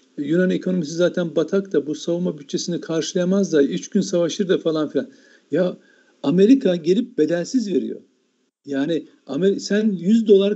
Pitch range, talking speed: 160-210 Hz, 150 wpm